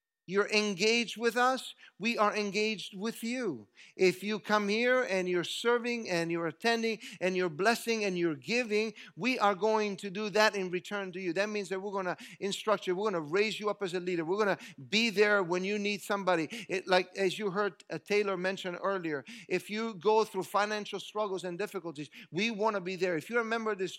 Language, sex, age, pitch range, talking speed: English, male, 50-69, 165-210 Hz, 220 wpm